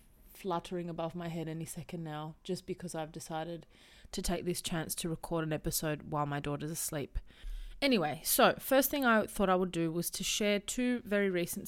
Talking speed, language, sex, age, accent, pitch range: 195 wpm, English, female, 20-39, Australian, 160-200 Hz